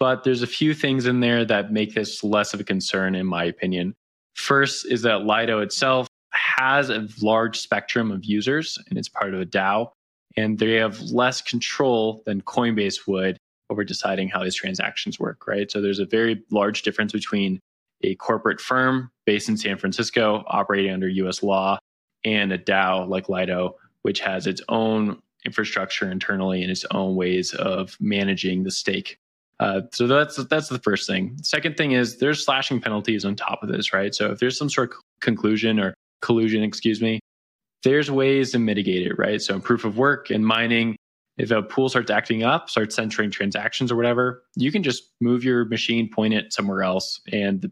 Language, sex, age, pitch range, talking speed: English, male, 20-39, 100-120 Hz, 190 wpm